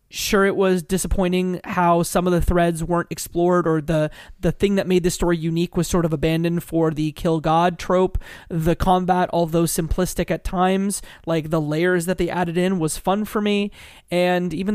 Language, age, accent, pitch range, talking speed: English, 20-39, American, 165-195 Hz, 195 wpm